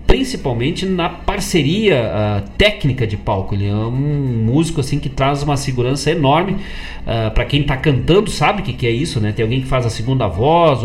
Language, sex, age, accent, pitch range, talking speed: Portuguese, male, 40-59, Brazilian, 120-165 Hz, 200 wpm